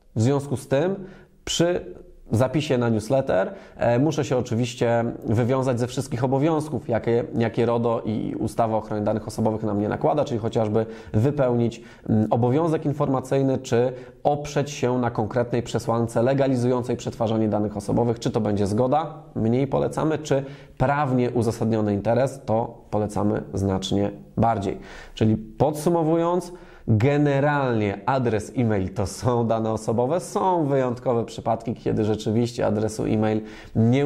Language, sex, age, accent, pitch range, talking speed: Polish, male, 20-39, native, 110-145 Hz, 130 wpm